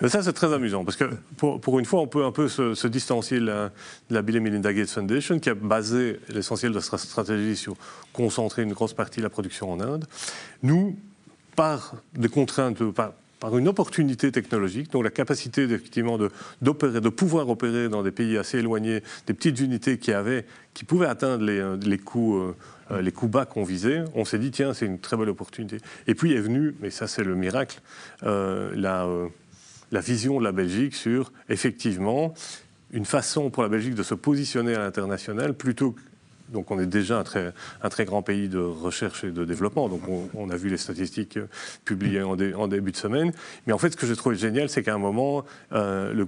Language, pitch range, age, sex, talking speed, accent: French, 100-135 Hz, 40-59, male, 210 wpm, French